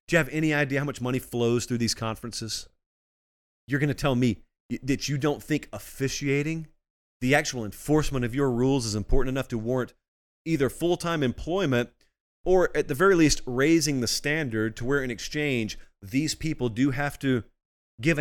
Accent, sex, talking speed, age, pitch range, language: American, male, 180 wpm, 30-49, 115-155 Hz, English